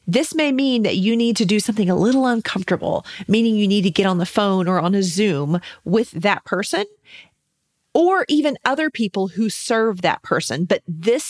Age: 40-59